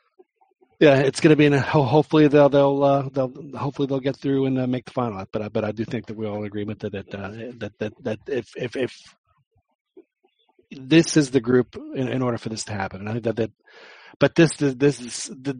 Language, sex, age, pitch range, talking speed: English, male, 40-59, 105-135 Hz, 240 wpm